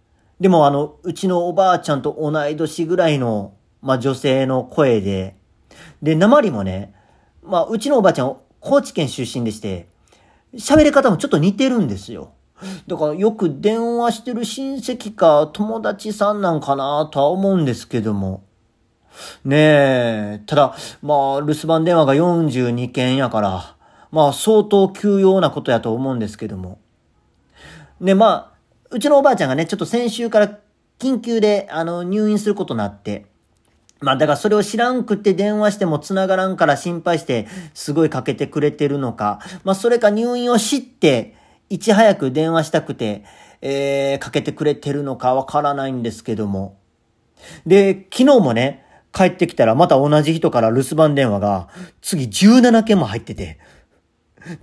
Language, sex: Japanese, male